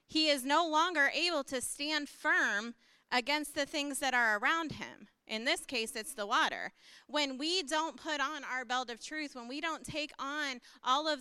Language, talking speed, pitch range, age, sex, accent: English, 200 wpm, 250-310 Hz, 30-49, female, American